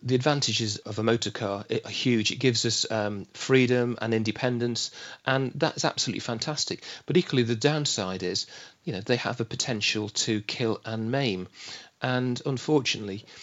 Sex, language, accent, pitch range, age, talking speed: male, English, British, 105-125 Hz, 40-59, 160 wpm